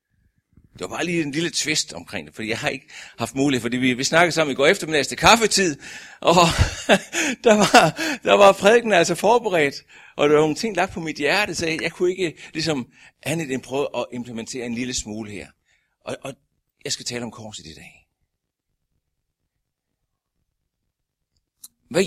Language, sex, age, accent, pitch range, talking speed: Danish, male, 60-79, native, 100-165 Hz, 180 wpm